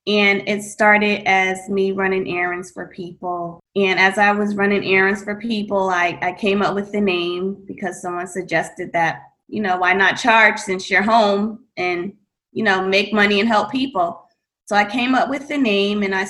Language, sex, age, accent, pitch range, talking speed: English, female, 20-39, American, 180-210 Hz, 195 wpm